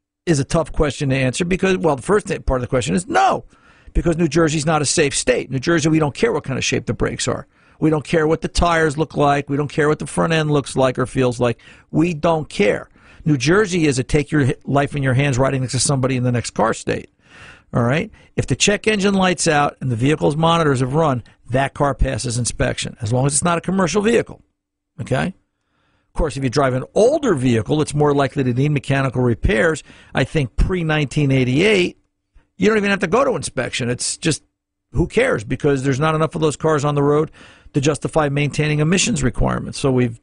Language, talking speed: English, 225 wpm